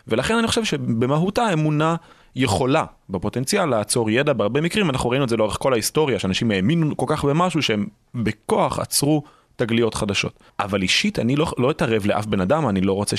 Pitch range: 100-160 Hz